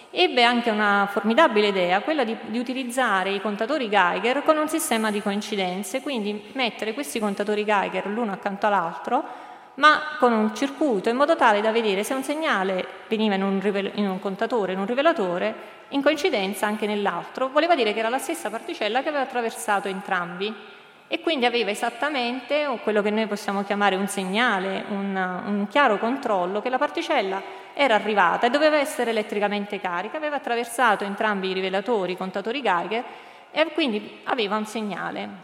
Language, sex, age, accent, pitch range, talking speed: Italian, female, 30-49, native, 205-250 Hz, 165 wpm